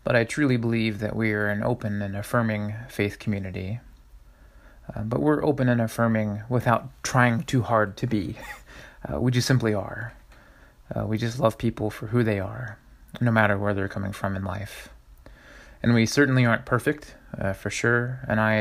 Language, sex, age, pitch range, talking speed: English, male, 30-49, 100-120 Hz, 185 wpm